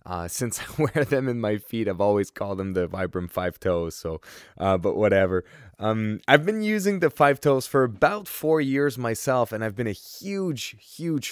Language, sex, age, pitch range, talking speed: English, male, 20-39, 95-125 Hz, 200 wpm